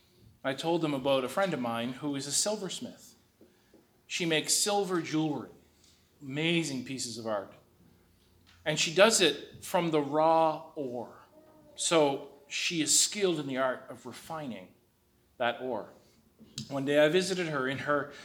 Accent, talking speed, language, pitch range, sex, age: American, 150 wpm, English, 130-170 Hz, male, 40-59